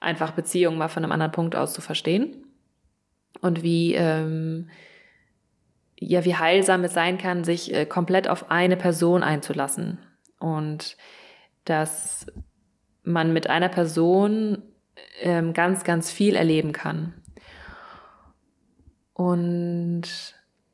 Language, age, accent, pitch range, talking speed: German, 20-39, German, 165-185 Hz, 110 wpm